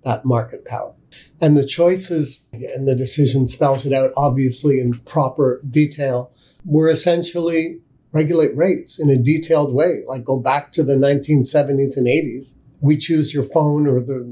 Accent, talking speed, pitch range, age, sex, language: American, 160 wpm, 130-155 Hz, 50-69, male, English